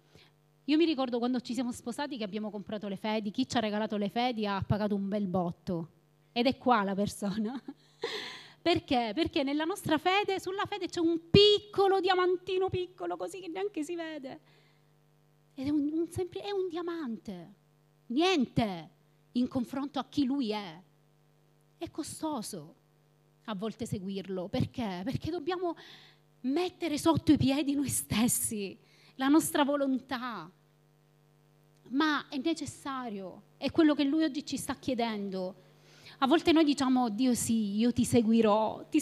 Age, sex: 30-49, female